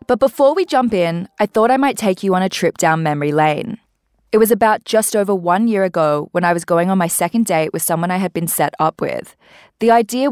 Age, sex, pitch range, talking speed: 20-39, female, 160-205 Hz, 250 wpm